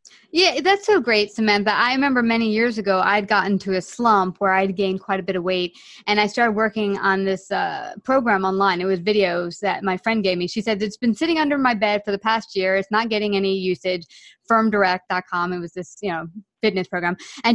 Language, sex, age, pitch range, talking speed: English, female, 20-39, 195-235 Hz, 225 wpm